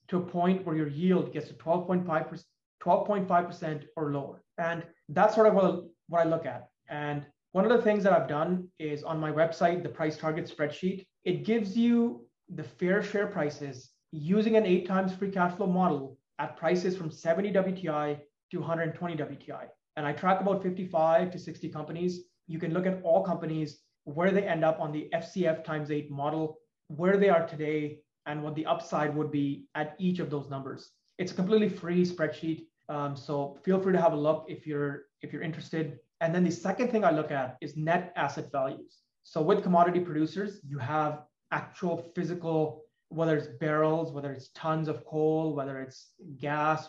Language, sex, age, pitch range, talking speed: English, male, 30-49, 150-180 Hz, 190 wpm